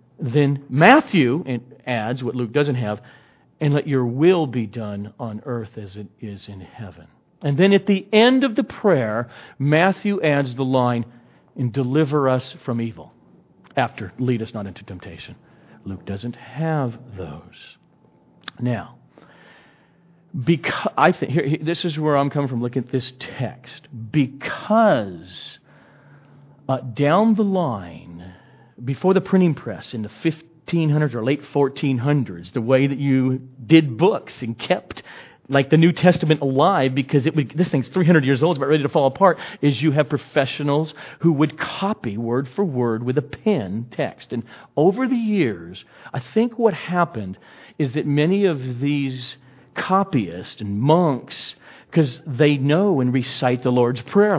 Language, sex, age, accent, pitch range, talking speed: English, male, 50-69, American, 120-160 Hz, 155 wpm